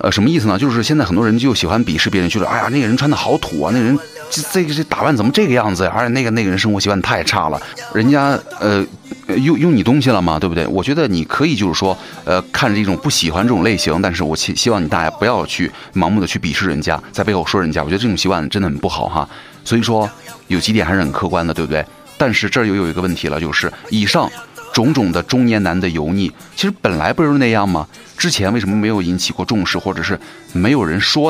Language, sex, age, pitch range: Chinese, male, 30-49, 90-115 Hz